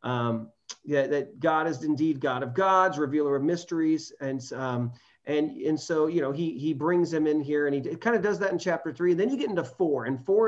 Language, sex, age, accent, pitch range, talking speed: English, male, 40-59, American, 140-185 Hz, 240 wpm